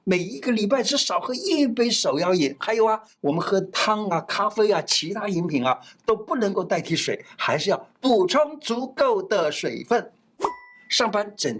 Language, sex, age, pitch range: Chinese, male, 50-69, 165-245 Hz